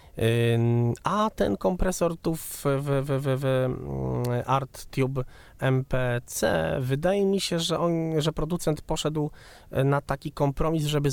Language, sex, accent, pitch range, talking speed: Polish, male, native, 105-145 Hz, 115 wpm